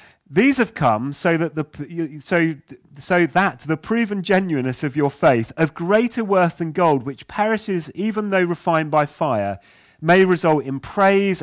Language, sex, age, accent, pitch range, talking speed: English, male, 30-49, British, 140-190 Hz, 165 wpm